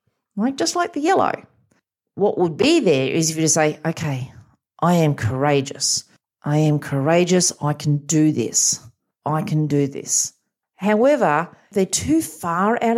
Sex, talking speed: female, 160 wpm